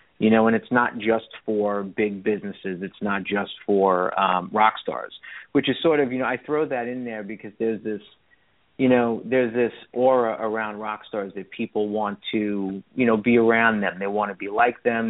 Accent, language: American, English